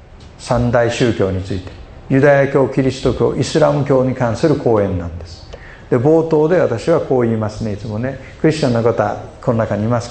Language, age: Japanese, 50-69